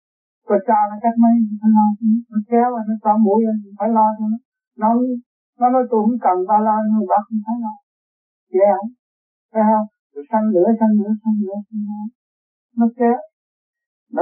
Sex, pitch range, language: male, 155-230 Hz, Vietnamese